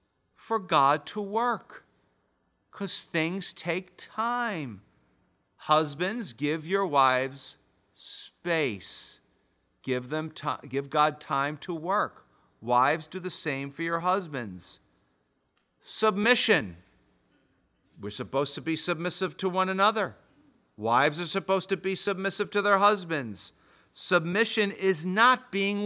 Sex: male